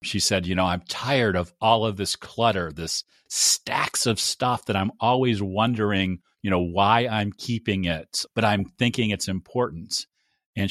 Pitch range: 100-130 Hz